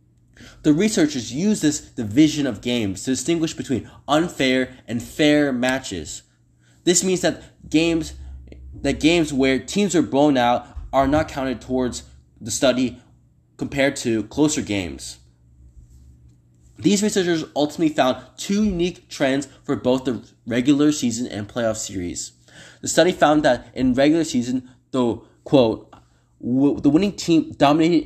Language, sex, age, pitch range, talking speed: English, male, 20-39, 110-155 Hz, 135 wpm